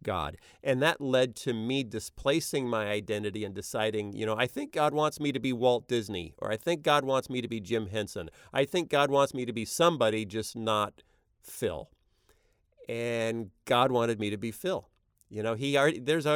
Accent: American